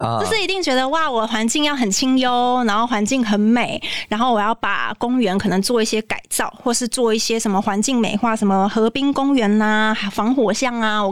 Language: Chinese